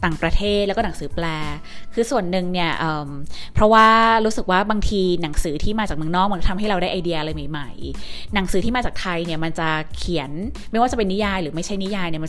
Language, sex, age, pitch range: Thai, female, 20-39, 160-205 Hz